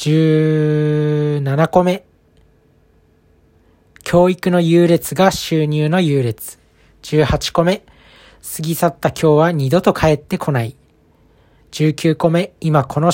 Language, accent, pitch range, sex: Japanese, native, 130-170 Hz, male